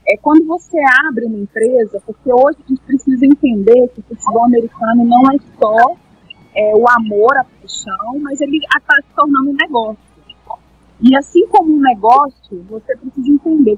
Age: 30-49